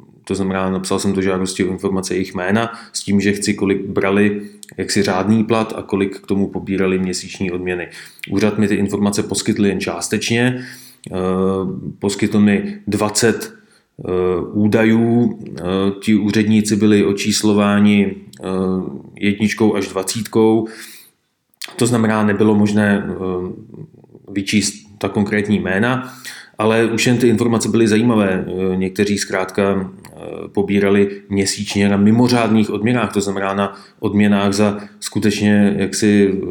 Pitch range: 100-110 Hz